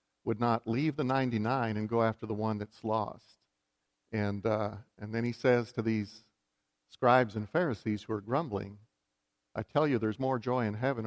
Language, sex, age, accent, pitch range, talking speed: English, male, 50-69, American, 105-130 Hz, 185 wpm